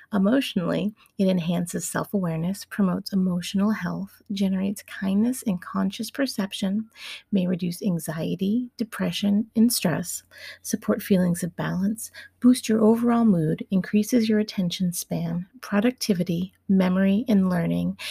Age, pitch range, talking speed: 30-49, 180-220 Hz, 115 wpm